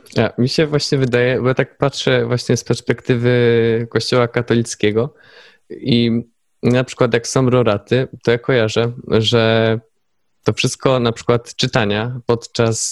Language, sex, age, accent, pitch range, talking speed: Polish, male, 20-39, native, 110-125 Hz, 140 wpm